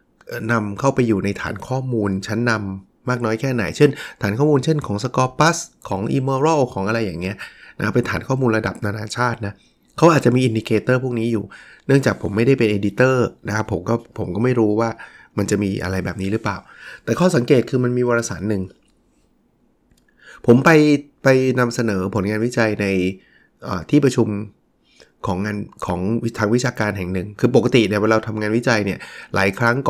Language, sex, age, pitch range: Thai, male, 20-39, 100-125 Hz